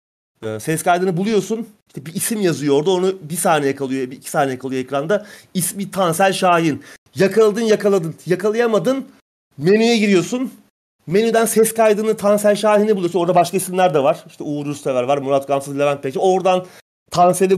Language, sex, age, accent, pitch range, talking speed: Turkish, male, 30-49, native, 155-205 Hz, 155 wpm